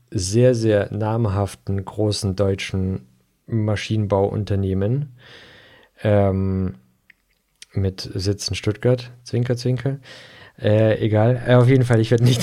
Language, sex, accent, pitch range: German, male, German, 100-125 Hz